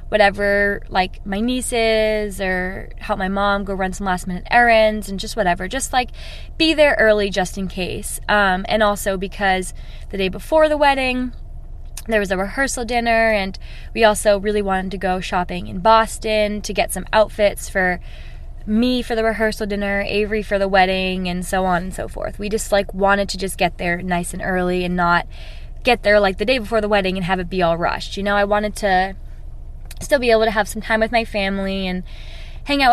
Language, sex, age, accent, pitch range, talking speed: English, female, 20-39, American, 190-225 Hz, 210 wpm